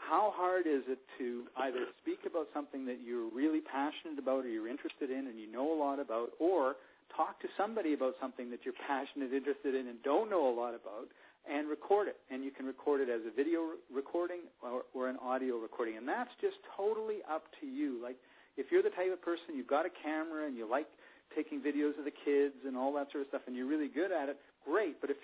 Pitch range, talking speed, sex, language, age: 125-165 Hz, 235 wpm, male, English, 50-69